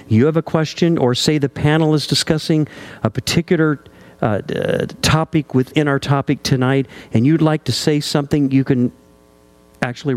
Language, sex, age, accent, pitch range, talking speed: English, male, 50-69, American, 115-145 Hz, 160 wpm